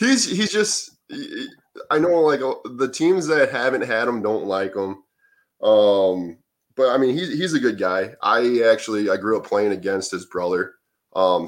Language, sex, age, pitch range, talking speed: English, male, 20-39, 90-135 Hz, 190 wpm